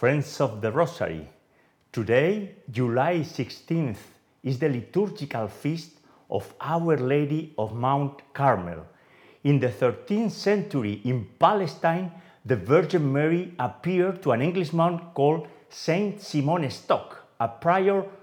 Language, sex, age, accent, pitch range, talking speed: English, male, 40-59, Spanish, 125-170 Hz, 120 wpm